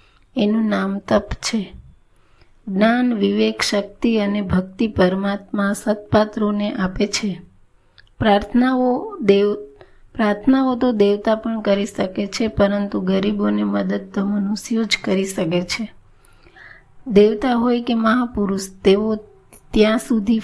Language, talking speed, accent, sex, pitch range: Gujarati, 95 wpm, native, female, 195-220 Hz